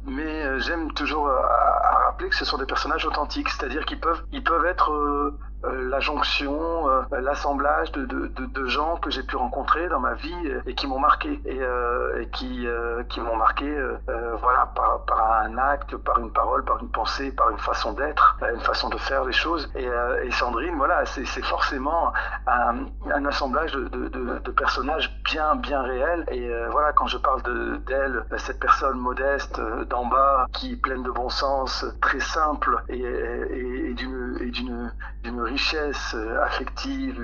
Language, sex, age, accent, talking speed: French, male, 50-69, French, 200 wpm